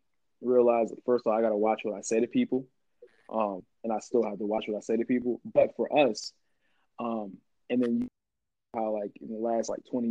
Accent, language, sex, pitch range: American, English, male, 110-125 Hz